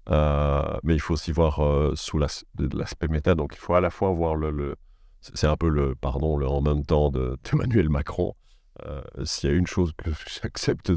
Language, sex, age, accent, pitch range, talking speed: Dutch, male, 50-69, French, 70-85 Hz, 225 wpm